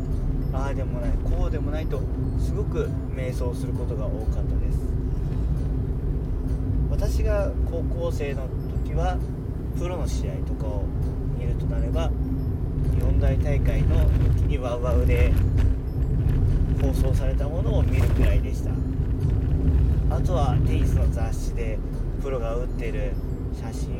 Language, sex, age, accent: Japanese, male, 40-59, native